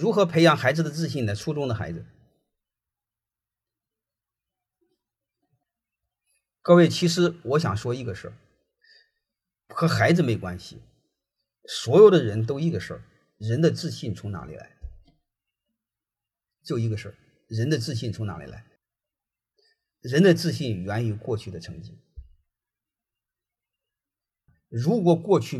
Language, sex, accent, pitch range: Chinese, male, native, 110-170 Hz